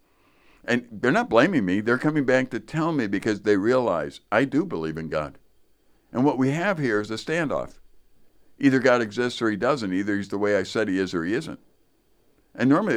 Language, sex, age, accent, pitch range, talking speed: English, male, 60-79, American, 105-145 Hz, 215 wpm